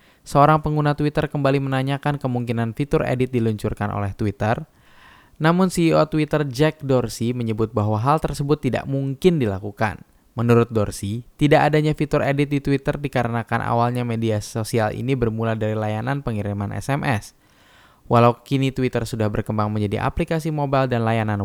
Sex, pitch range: male, 110-145 Hz